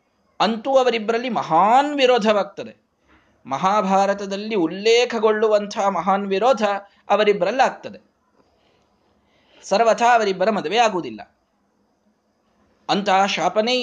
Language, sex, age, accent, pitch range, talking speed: Kannada, male, 20-39, native, 135-215 Hz, 55 wpm